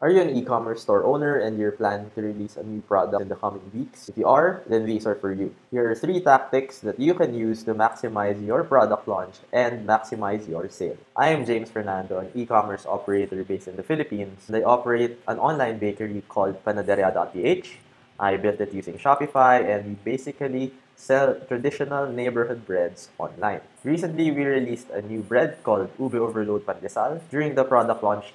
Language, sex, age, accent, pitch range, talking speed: English, male, 20-39, Filipino, 110-135 Hz, 185 wpm